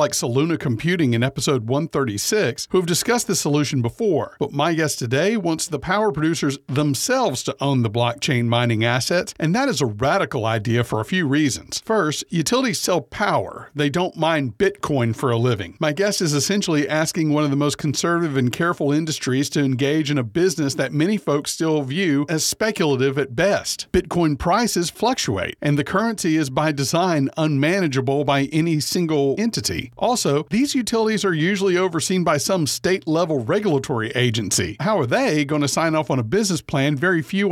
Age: 50-69